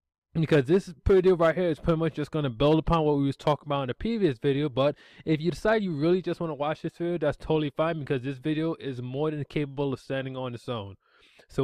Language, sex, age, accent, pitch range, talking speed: English, male, 20-39, American, 135-175 Hz, 260 wpm